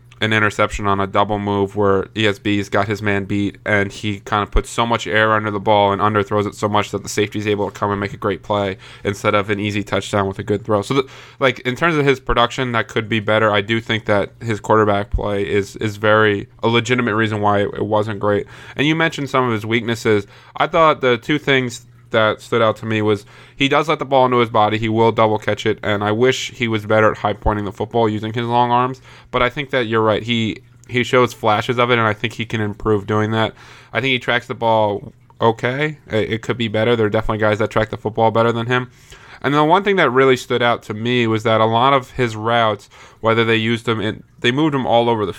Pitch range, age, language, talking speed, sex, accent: 105-125 Hz, 20-39, English, 255 wpm, male, American